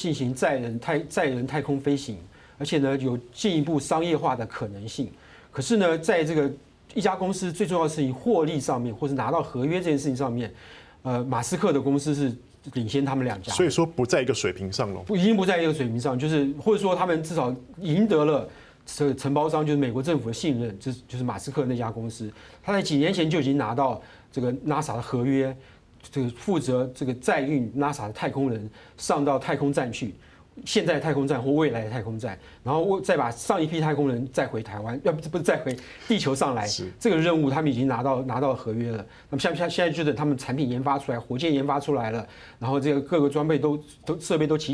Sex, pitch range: male, 125-155 Hz